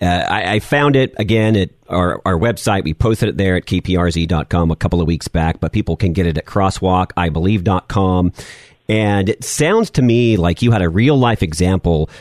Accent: American